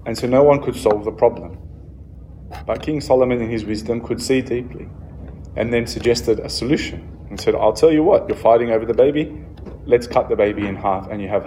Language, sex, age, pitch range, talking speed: English, male, 20-39, 80-115 Hz, 220 wpm